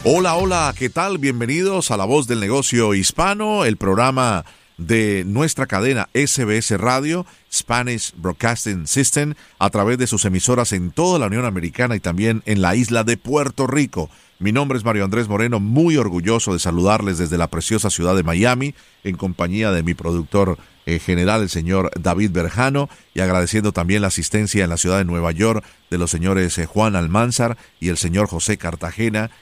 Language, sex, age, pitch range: Spanish, male, 40-59, 90-115 Hz